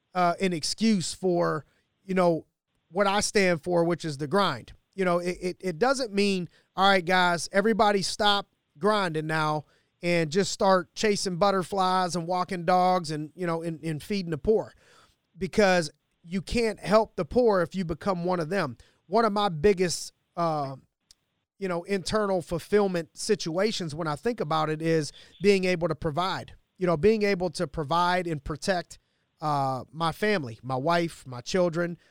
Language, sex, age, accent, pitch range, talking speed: English, male, 30-49, American, 160-195 Hz, 170 wpm